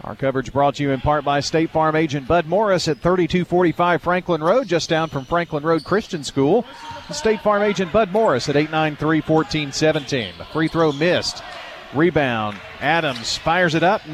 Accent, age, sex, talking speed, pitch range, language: American, 40-59, male, 165 wpm, 135-175 Hz, English